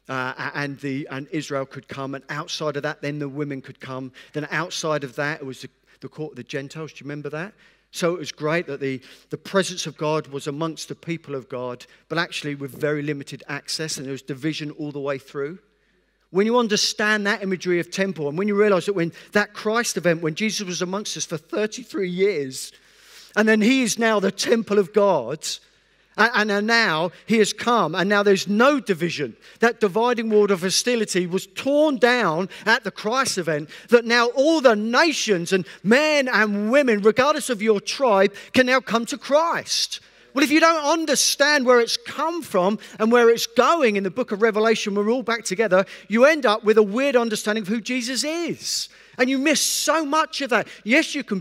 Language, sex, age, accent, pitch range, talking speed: English, male, 50-69, British, 155-230 Hz, 210 wpm